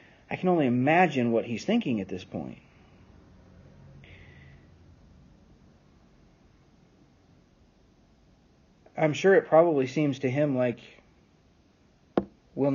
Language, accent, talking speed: English, American, 90 wpm